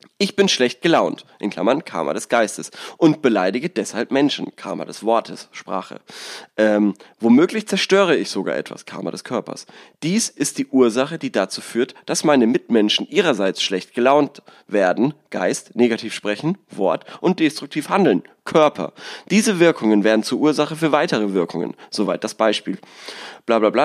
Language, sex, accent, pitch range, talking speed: German, male, German, 105-155 Hz, 150 wpm